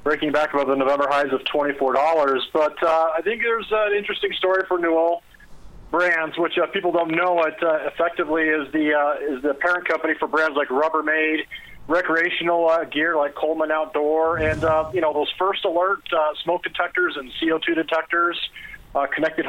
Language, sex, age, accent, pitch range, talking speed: English, male, 40-59, American, 150-170 Hz, 180 wpm